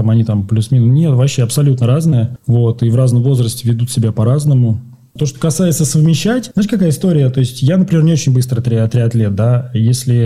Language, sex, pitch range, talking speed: Russian, male, 120-150 Hz, 195 wpm